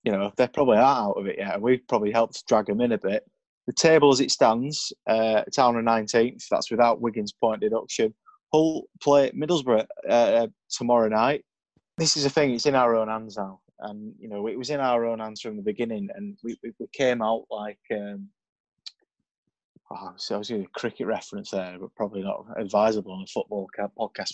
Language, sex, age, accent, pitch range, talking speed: English, male, 20-39, British, 110-140 Hz, 195 wpm